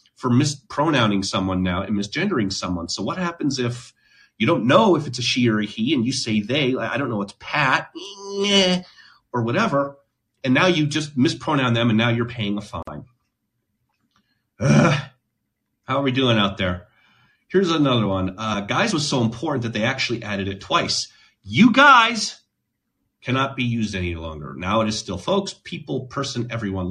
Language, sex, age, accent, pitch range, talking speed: English, male, 30-49, American, 105-150 Hz, 175 wpm